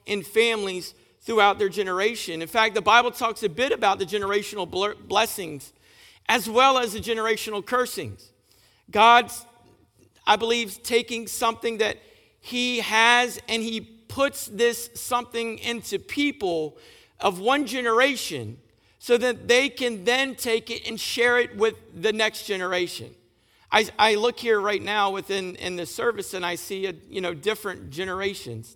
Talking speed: 150 wpm